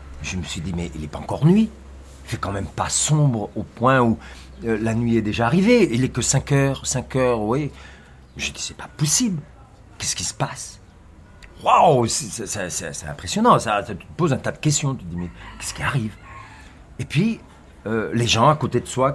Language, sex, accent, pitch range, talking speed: French, male, French, 85-125 Hz, 230 wpm